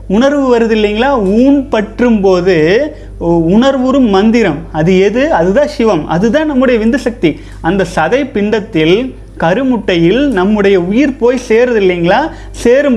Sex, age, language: male, 30-49, Tamil